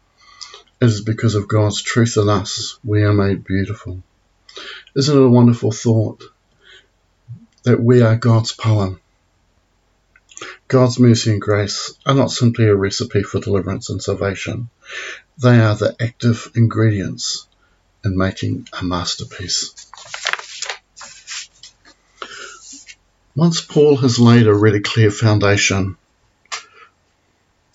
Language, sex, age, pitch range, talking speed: English, male, 60-79, 100-120 Hz, 110 wpm